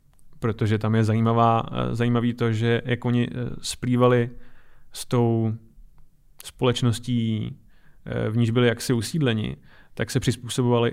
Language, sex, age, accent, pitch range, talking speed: Czech, male, 30-49, native, 110-125 Hz, 110 wpm